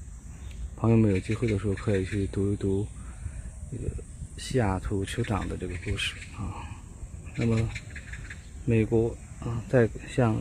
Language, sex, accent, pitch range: Chinese, male, native, 95-120 Hz